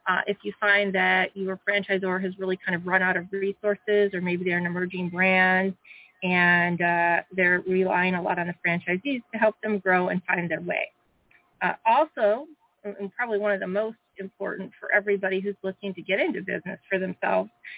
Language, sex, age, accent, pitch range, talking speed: English, female, 30-49, American, 185-210 Hz, 190 wpm